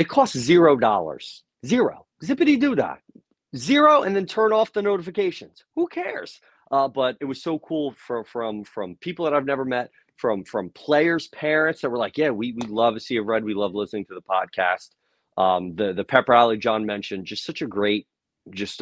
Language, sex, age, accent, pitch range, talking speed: English, male, 30-49, American, 95-125 Hz, 210 wpm